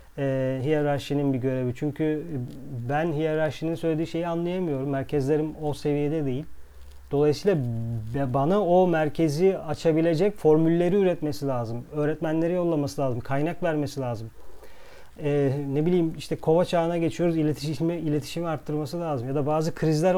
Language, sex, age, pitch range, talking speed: Turkish, male, 40-59, 135-165 Hz, 130 wpm